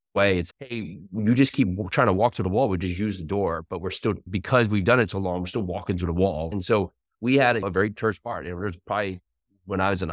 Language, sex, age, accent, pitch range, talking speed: English, male, 30-49, American, 90-110 Hz, 285 wpm